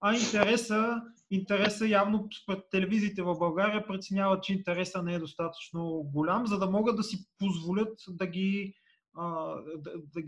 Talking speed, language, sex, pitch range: 145 wpm, English, male, 170-225 Hz